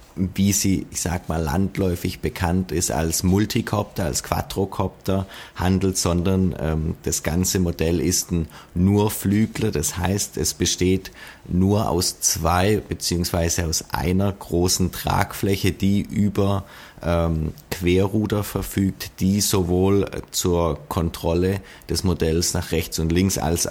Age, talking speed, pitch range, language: 30-49, 125 wpm, 85-100 Hz, German